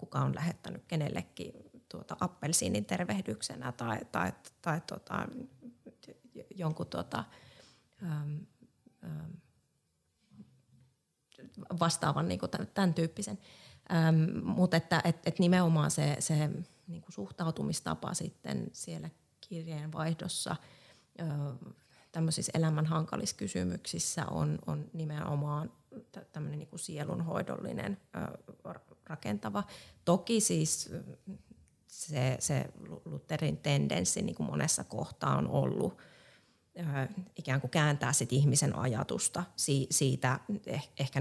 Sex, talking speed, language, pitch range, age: female, 90 wpm, Finnish, 135-170 Hz, 30-49